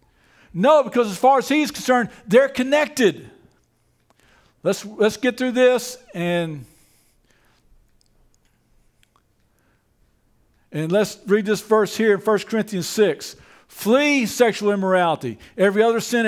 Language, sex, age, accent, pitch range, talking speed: English, male, 50-69, American, 195-255 Hz, 115 wpm